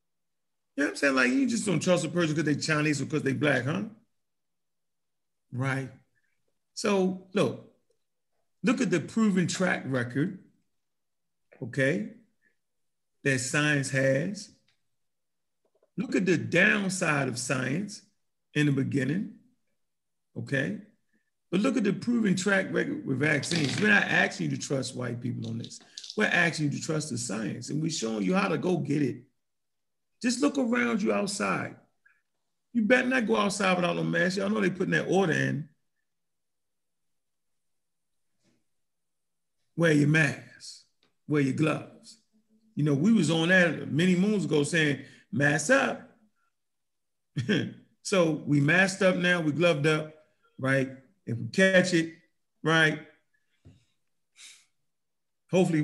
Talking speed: 140 wpm